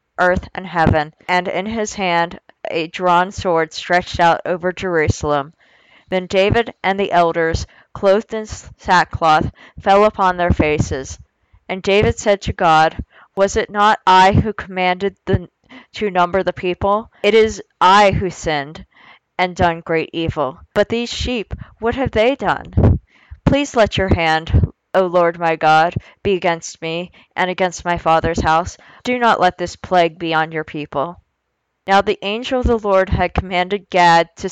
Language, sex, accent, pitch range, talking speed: English, female, American, 165-195 Hz, 160 wpm